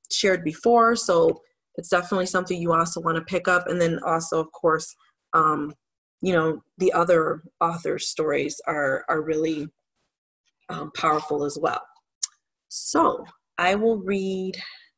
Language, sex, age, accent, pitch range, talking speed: English, female, 30-49, American, 160-205 Hz, 140 wpm